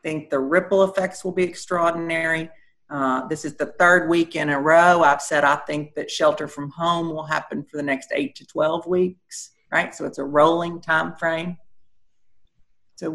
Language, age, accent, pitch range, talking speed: English, 40-59, American, 140-180 Hz, 190 wpm